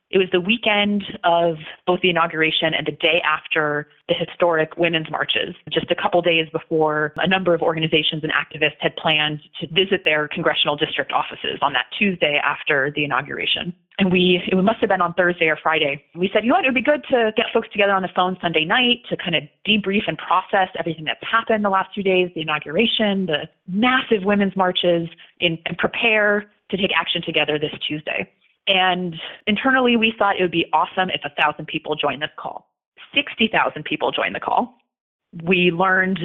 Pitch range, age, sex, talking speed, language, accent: 160-200 Hz, 30-49, female, 195 wpm, English, American